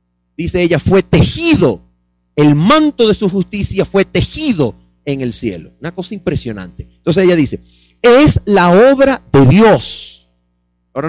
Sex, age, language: male, 40-59, Spanish